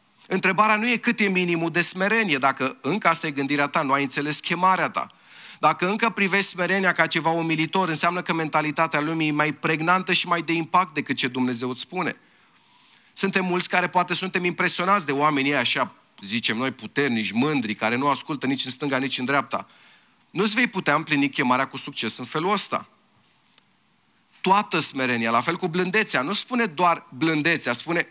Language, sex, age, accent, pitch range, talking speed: Romanian, male, 30-49, native, 130-185 Hz, 185 wpm